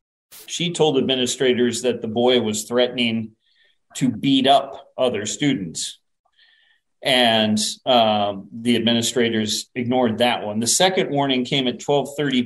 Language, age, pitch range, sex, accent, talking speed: English, 40-59, 115-135 Hz, male, American, 125 wpm